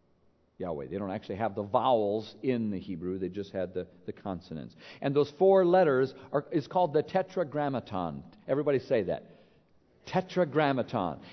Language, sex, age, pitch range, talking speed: English, male, 50-69, 110-160 Hz, 155 wpm